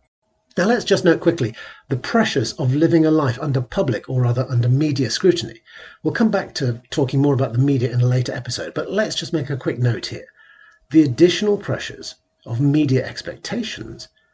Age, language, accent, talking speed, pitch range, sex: 50-69, English, British, 190 wpm, 125-160 Hz, male